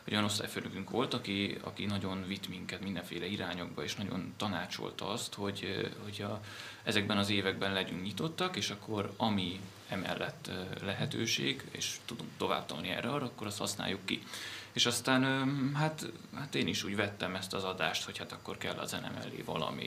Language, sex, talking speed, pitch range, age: Hungarian, male, 170 wpm, 95-120 Hz, 20-39